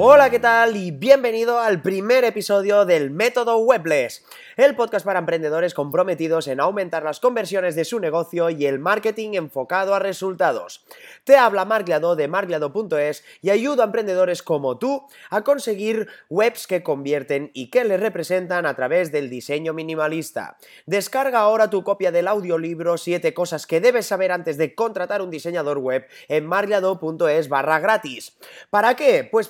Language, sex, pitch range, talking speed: Spanish, male, 160-220 Hz, 160 wpm